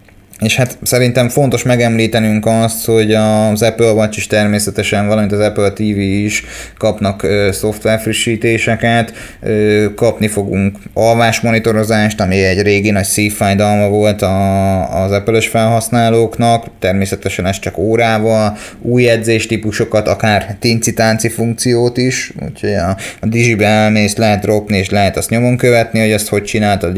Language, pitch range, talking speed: Hungarian, 100-115 Hz, 125 wpm